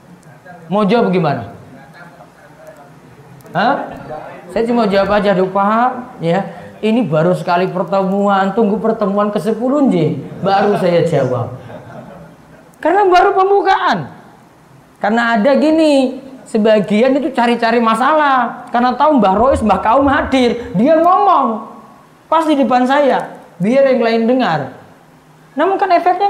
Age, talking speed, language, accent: 30-49, 120 wpm, Indonesian, native